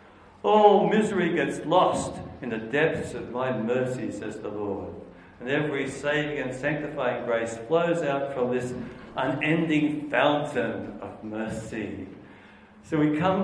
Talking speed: 135 wpm